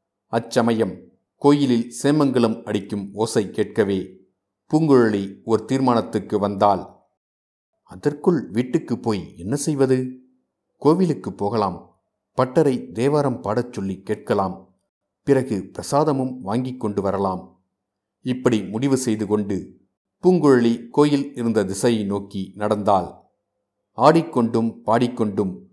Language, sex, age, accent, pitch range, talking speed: Tamil, male, 50-69, native, 100-130 Hz, 90 wpm